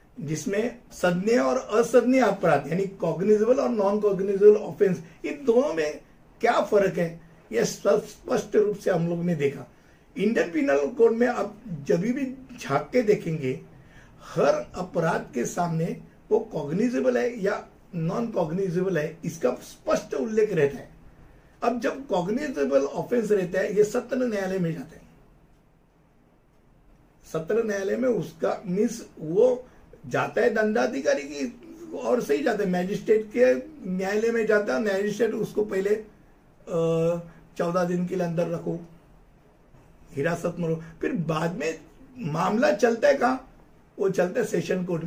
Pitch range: 170-230 Hz